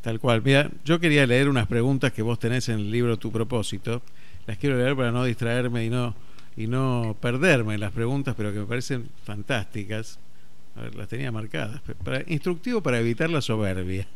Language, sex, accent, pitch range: Spanish, male, Argentinian, 115-155 Hz